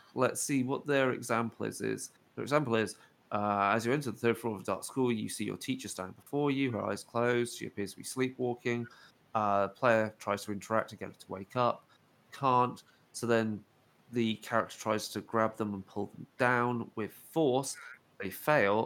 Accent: British